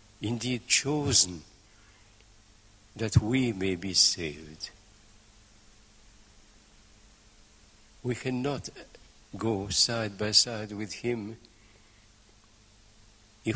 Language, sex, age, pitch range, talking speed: English, male, 60-79, 100-115 Hz, 70 wpm